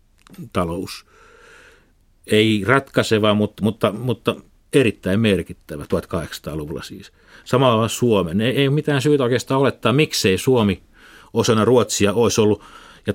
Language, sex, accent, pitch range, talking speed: Finnish, male, native, 95-120 Hz, 115 wpm